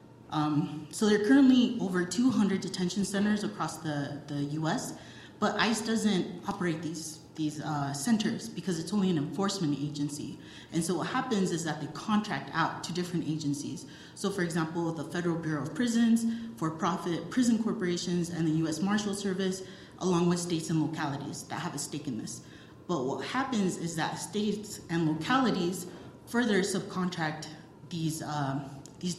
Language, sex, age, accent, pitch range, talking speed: English, female, 30-49, American, 155-200 Hz, 165 wpm